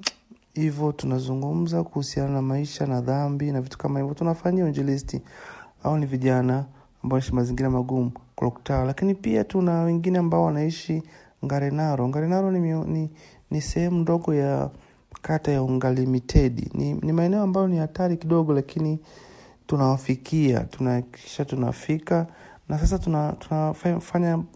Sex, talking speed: male, 120 wpm